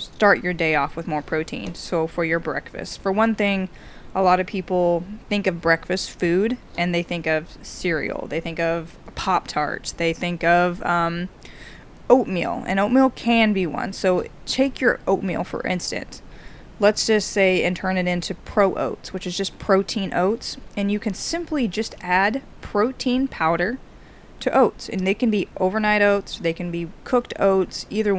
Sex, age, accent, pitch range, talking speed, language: female, 20-39, American, 175-215 Hz, 180 wpm, English